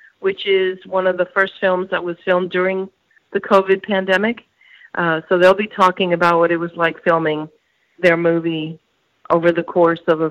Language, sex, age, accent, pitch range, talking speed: English, female, 50-69, American, 165-195 Hz, 185 wpm